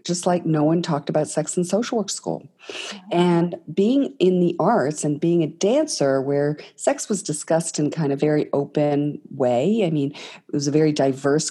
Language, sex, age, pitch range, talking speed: English, female, 40-59, 150-205 Hz, 195 wpm